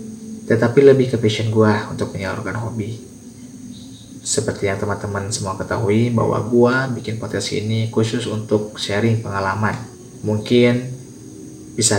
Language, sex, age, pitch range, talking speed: Indonesian, male, 20-39, 100-120 Hz, 120 wpm